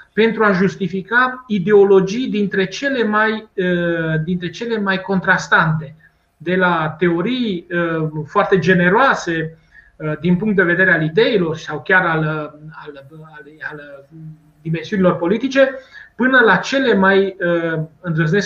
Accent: native